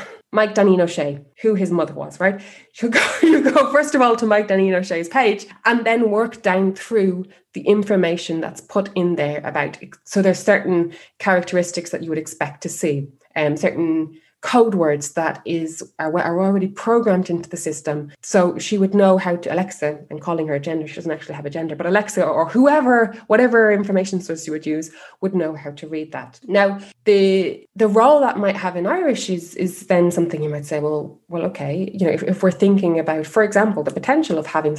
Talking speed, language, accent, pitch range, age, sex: 210 wpm, English, Irish, 155-200 Hz, 20-39, female